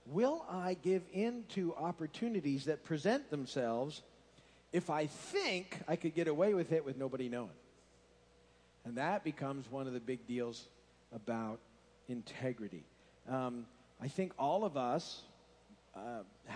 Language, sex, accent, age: English, male, American, 50-69